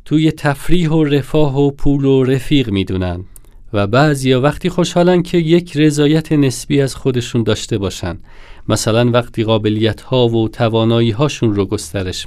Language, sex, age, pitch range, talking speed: Persian, male, 40-59, 115-165 Hz, 145 wpm